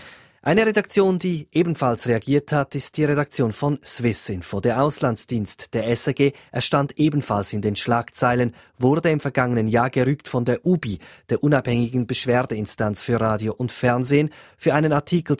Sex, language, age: male, German, 20-39